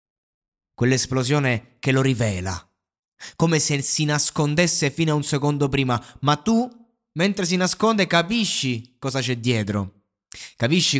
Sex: male